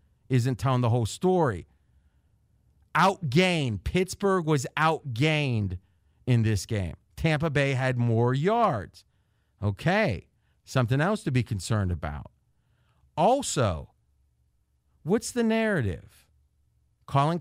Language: English